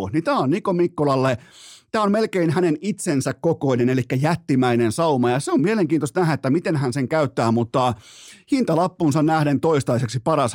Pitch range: 120-150 Hz